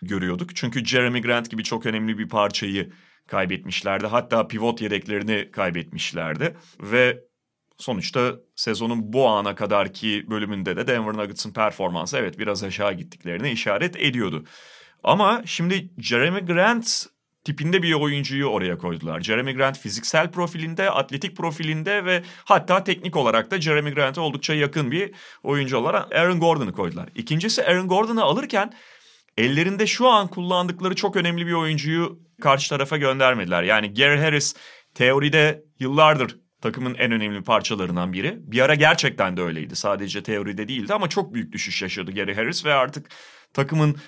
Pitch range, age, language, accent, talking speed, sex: 110-175 Hz, 30-49, Turkish, native, 140 wpm, male